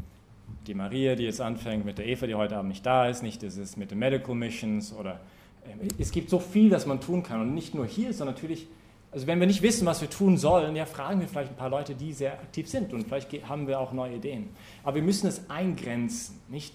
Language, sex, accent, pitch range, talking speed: English, male, German, 105-145 Hz, 250 wpm